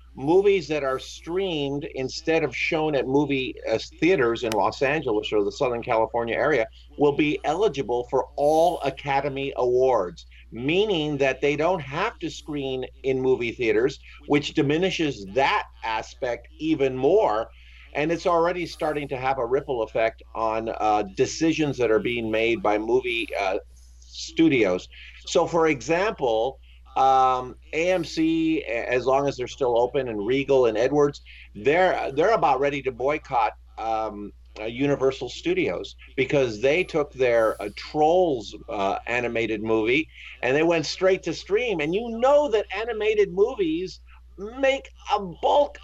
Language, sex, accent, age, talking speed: English, male, American, 50-69, 145 wpm